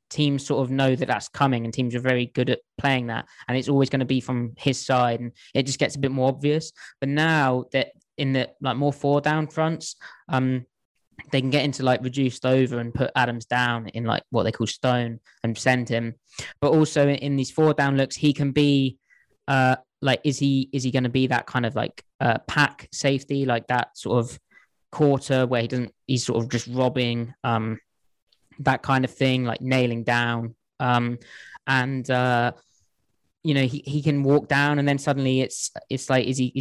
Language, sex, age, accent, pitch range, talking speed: English, male, 20-39, British, 120-140 Hz, 210 wpm